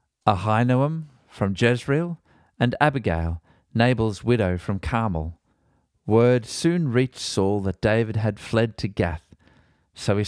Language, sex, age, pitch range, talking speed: English, male, 40-59, 95-125 Hz, 125 wpm